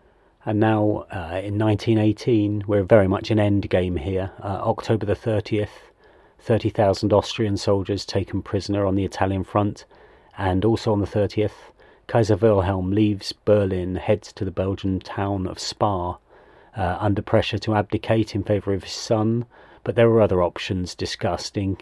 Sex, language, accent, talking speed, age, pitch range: male, English, British, 155 wpm, 40-59, 95-110 Hz